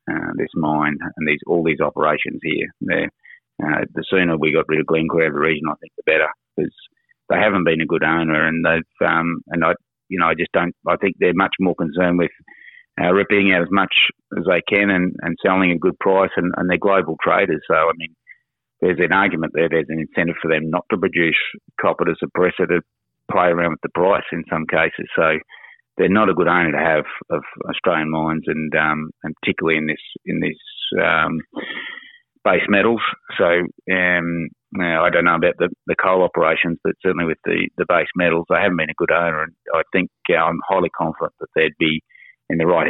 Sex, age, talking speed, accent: male, 30-49, 215 wpm, Australian